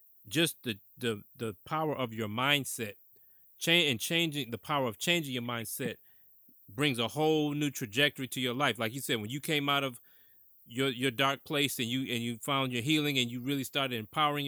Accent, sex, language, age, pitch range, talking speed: American, male, English, 30-49, 115-145 Hz, 205 wpm